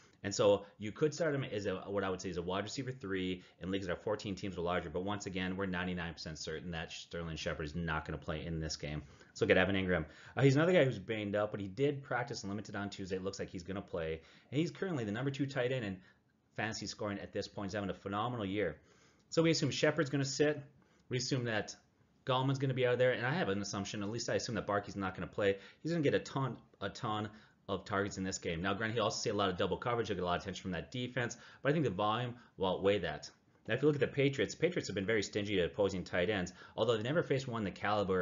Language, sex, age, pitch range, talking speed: English, male, 30-49, 85-120 Hz, 285 wpm